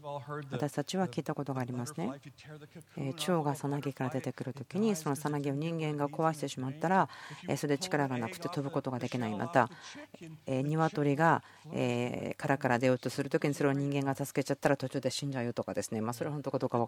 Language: Japanese